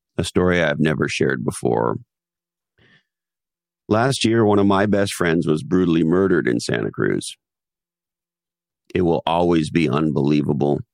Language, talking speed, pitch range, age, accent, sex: English, 130 wpm, 85-115 Hz, 50-69, American, male